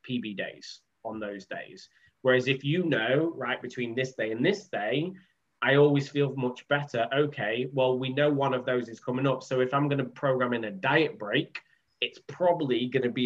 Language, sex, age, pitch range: English, male, 10-29, 115-145 Hz